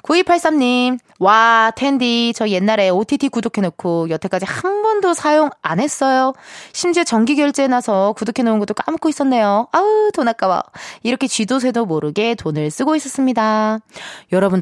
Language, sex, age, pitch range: Korean, female, 20-39, 200-295 Hz